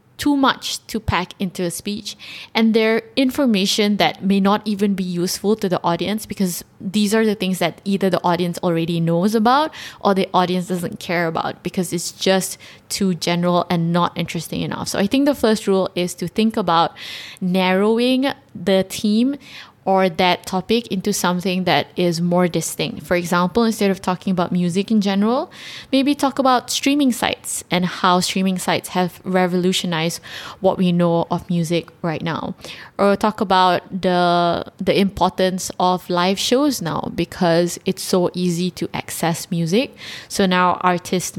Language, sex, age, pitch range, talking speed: English, female, 20-39, 175-210 Hz, 165 wpm